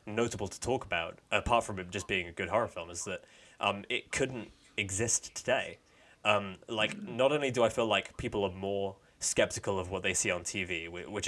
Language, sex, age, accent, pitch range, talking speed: English, male, 20-39, British, 95-115 Hz, 205 wpm